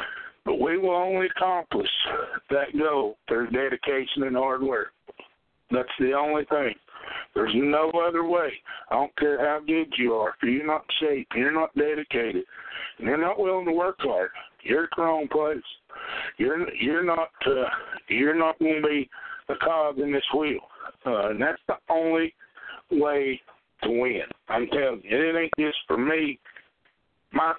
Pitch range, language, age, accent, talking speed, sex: 135-165 Hz, English, 60-79, American, 170 wpm, male